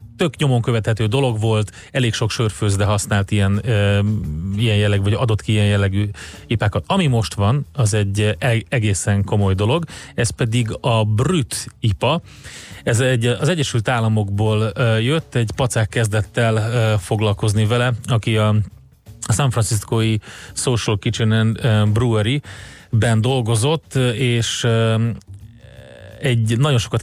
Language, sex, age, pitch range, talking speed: Hungarian, male, 30-49, 105-125 Hz, 125 wpm